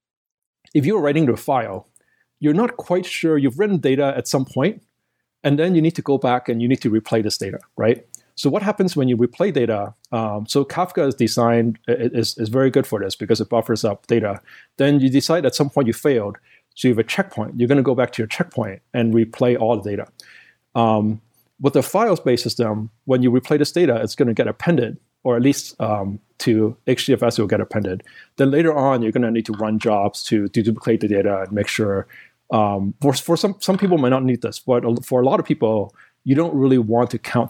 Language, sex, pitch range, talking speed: English, male, 110-135 Hz, 225 wpm